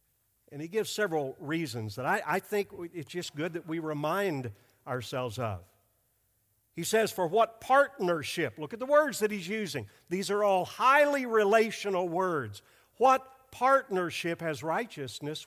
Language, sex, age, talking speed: English, male, 50-69, 150 wpm